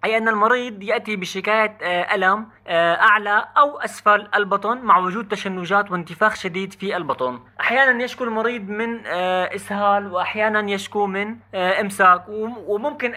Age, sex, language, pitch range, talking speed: 30-49, male, Arabic, 170-210 Hz, 125 wpm